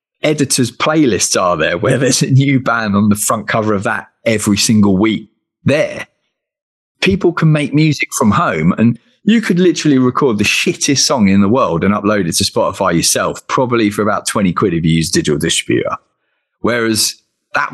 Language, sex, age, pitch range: English, male, 30-49, 100-145 Hz